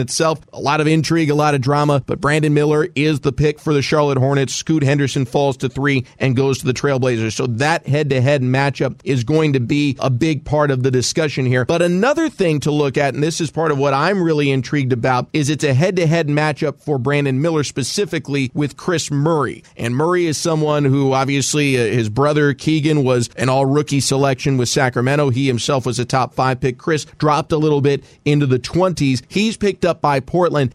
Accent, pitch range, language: American, 135-165 Hz, English